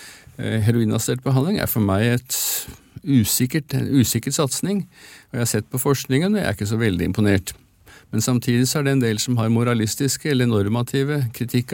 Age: 50-69